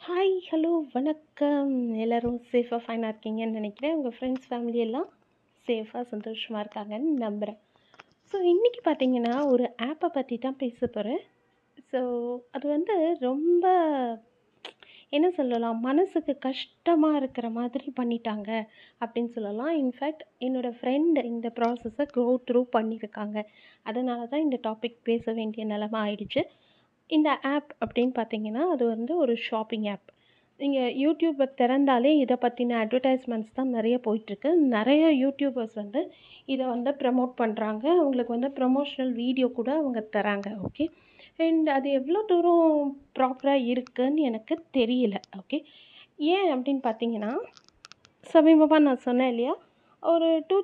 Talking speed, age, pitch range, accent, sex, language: 125 wpm, 30-49, 235-295 Hz, native, female, Tamil